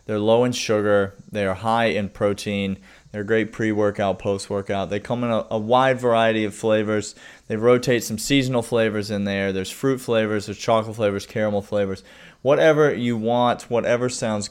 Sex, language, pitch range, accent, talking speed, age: male, English, 100-125 Hz, American, 170 wpm, 30-49